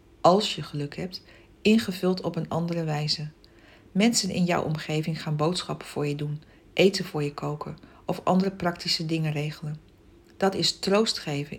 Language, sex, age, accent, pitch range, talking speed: Dutch, female, 60-79, Dutch, 160-200 Hz, 160 wpm